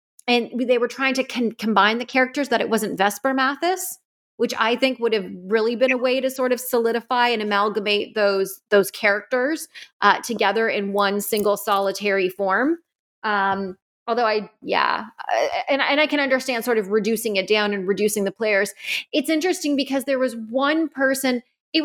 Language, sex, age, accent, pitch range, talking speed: English, female, 30-49, American, 200-260 Hz, 180 wpm